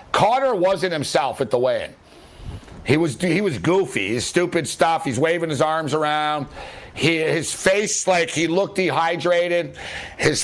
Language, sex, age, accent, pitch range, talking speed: English, male, 60-79, American, 150-195 Hz, 155 wpm